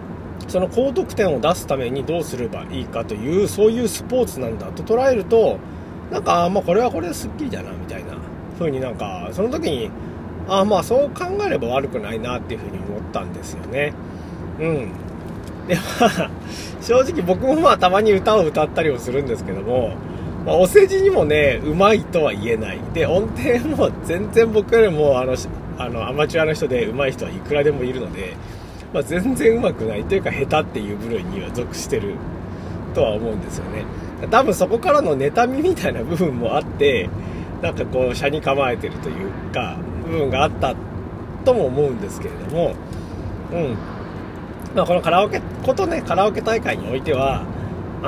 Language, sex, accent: Japanese, male, native